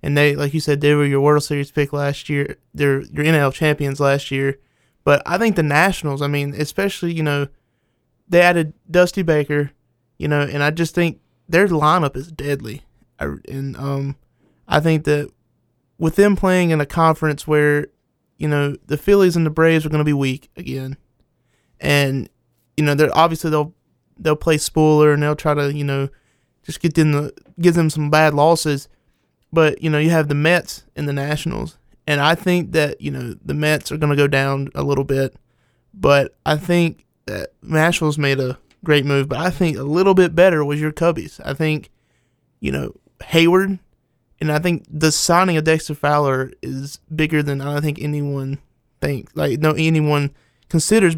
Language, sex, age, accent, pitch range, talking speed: English, male, 20-39, American, 140-165 Hz, 190 wpm